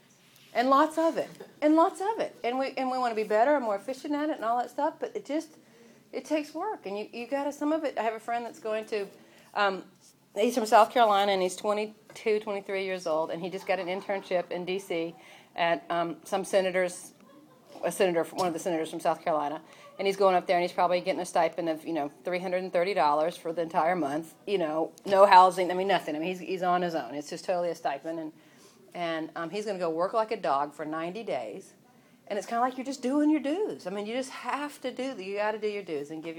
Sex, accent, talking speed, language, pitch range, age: female, American, 255 wpm, English, 175-240 Hz, 40-59